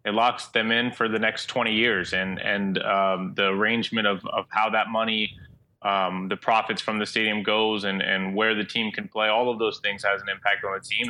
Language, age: English, 20-39